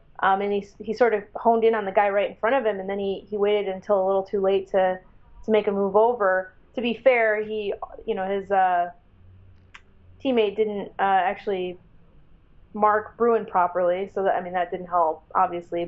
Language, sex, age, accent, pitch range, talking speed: English, female, 20-39, American, 185-220 Hz, 210 wpm